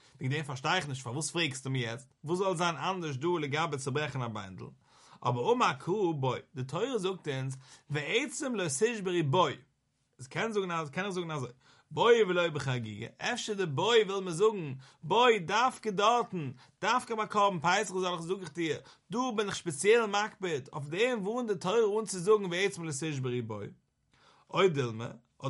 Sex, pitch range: male, 145-200 Hz